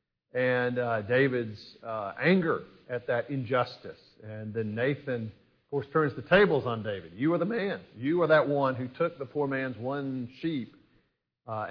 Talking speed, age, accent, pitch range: 175 wpm, 50-69, American, 105-130 Hz